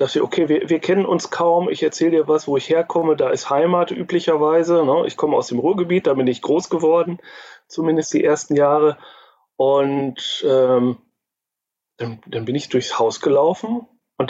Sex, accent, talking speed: male, German, 175 wpm